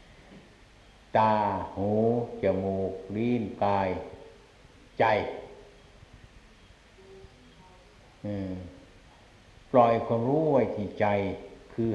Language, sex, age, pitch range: Thai, male, 60-79, 95-115 Hz